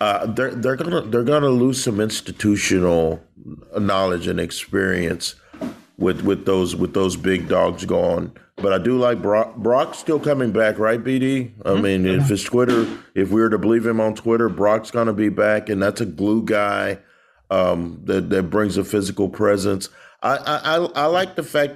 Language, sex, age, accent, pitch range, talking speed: English, male, 40-59, American, 95-120 Hz, 180 wpm